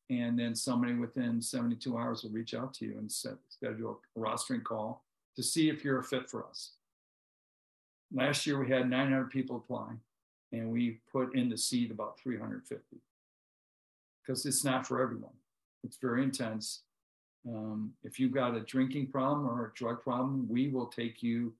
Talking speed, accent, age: 180 wpm, American, 50-69